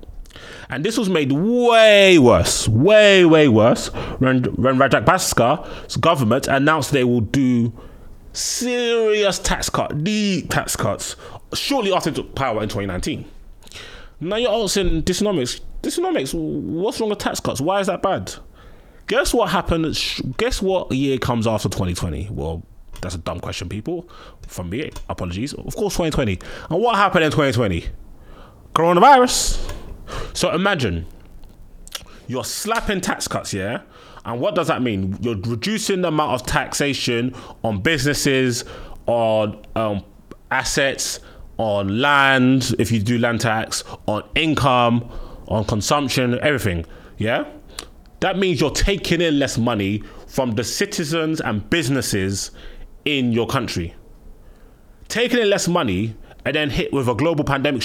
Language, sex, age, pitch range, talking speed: English, male, 20-39, 110-175 Hz, 140 wpm